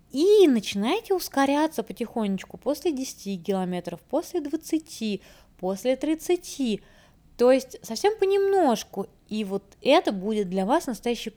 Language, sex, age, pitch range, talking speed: Russian, female, 20-39, 195-250 Hz, 115 wpm